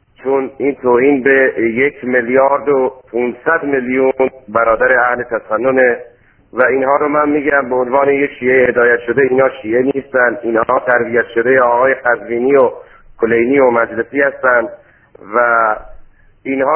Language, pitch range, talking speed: Persian, 125-155 Hz, 135 wpm